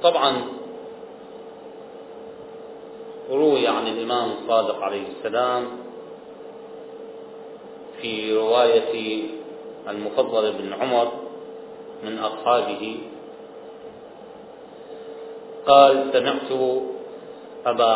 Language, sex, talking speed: Arabic, male, 55 wpm